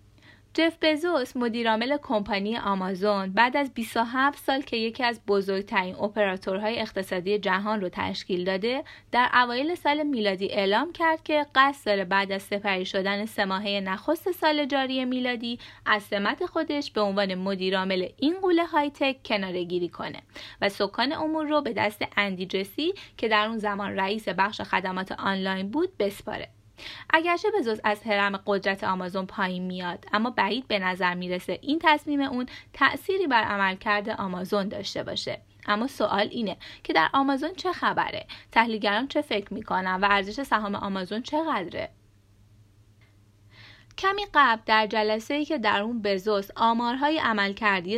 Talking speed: 145 wpm